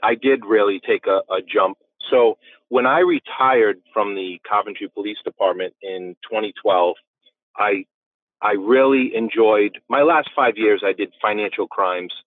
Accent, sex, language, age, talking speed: American, male, English, 40-59, 145 wpm